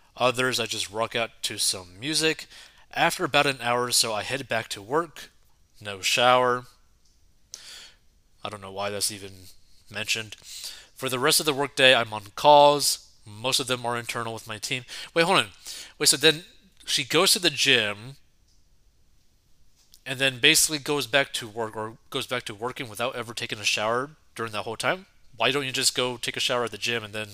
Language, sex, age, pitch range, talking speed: English, male, 30-49, 110-140 Hz, 200 wpm